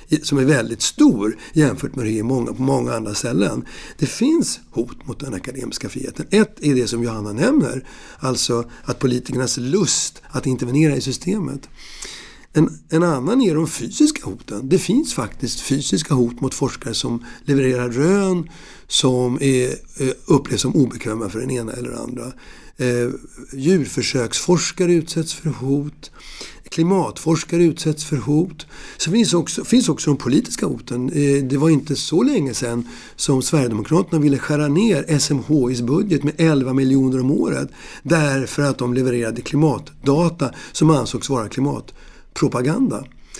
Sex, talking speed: male, 145 wpm